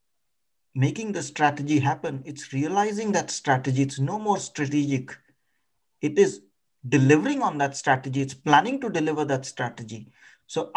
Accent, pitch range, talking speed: Indian, 140-180 Hz, 140 wpm